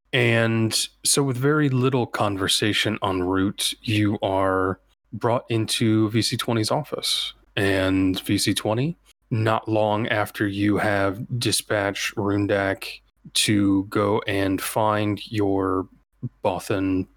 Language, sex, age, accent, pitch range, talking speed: English, male, 30-49, American, 95-115 Hz, 100 wpm